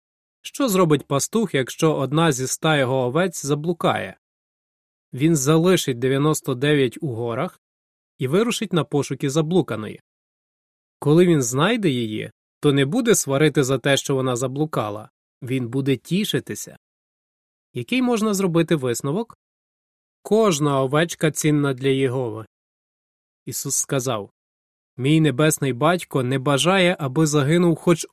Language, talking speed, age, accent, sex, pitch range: Ukrainian, 120 wpm, 20-39, native, male, 130-175 Hz